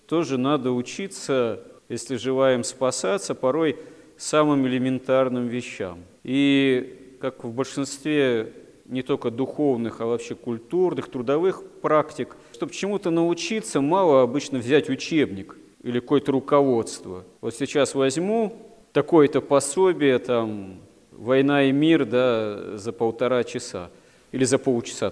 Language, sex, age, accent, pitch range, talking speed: Russian, male, 40-59, native, 115-140 Hz, 115 wpm